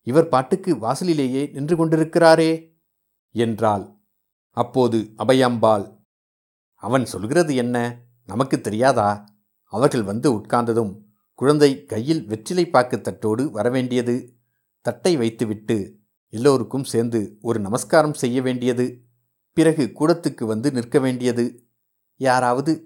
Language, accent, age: Tamil, native, 60-79